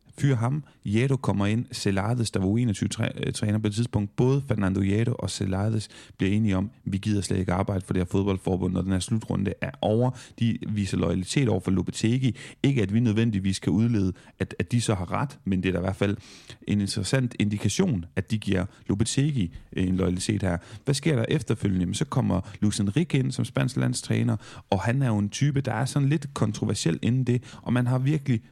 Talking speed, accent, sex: 215 wpm, native, male